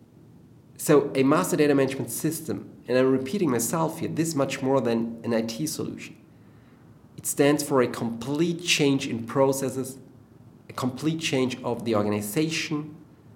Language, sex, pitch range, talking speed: English, male, 115-140 Hz, 150 wpm